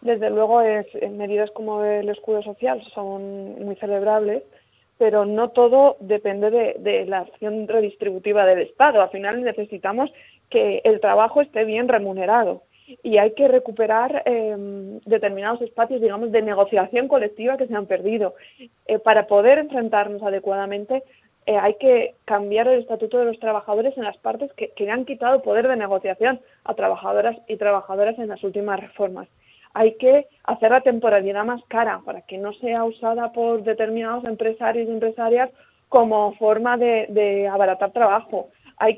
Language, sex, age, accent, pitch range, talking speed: Spanish, female, 20-39, Spanish, 205-245 Hz, 160 wpm